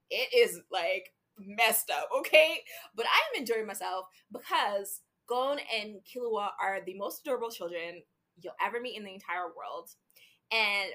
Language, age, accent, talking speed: English, 20-39, American, 155 wpm